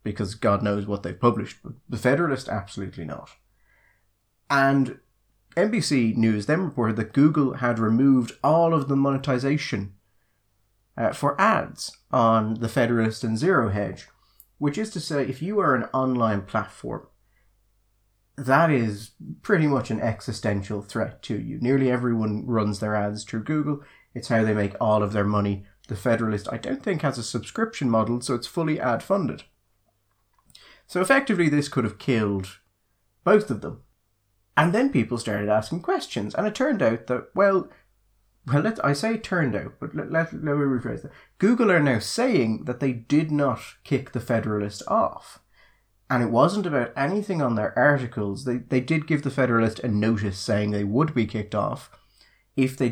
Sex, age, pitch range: male, 30-49, 105-140 Hz